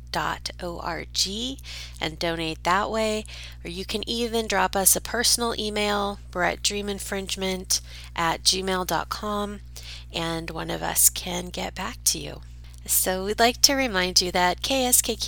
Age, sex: 30-49, female